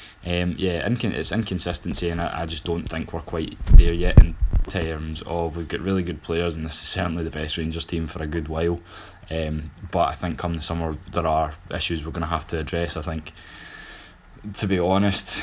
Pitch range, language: 80-90 Hz, English